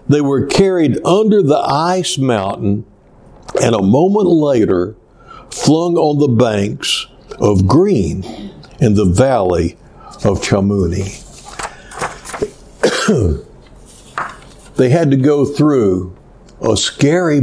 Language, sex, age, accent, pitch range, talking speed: English, male, 60-79, American, 105-150 Hz, 100 wpm